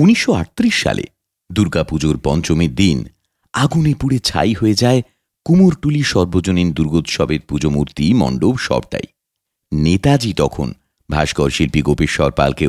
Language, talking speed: Bengali, 115 wpm